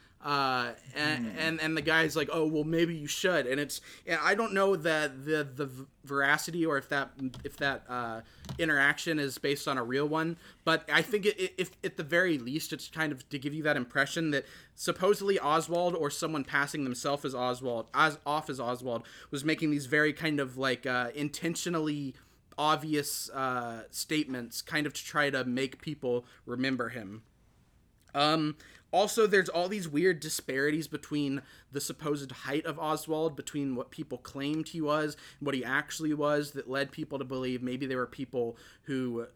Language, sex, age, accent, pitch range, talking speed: English, male, 30-49, American, 135-160 Hz, 180 wpm